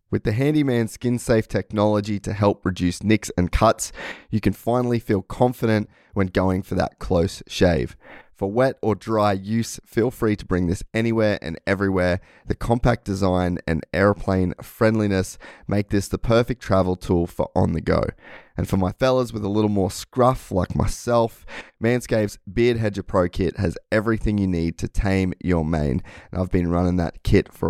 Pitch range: 90-115 Hz